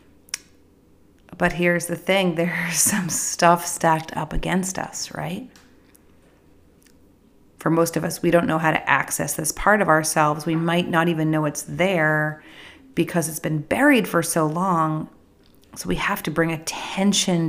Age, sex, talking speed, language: 30-49, female, 160 wpm, English